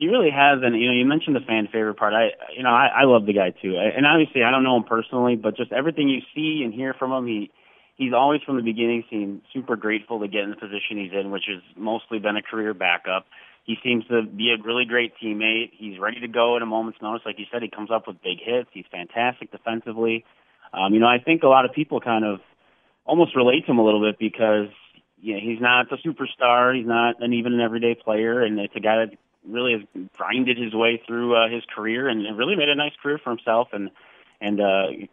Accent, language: American, English